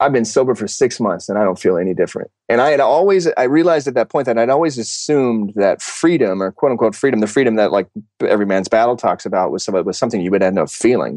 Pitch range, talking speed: 95-120 Hz, 260 wpm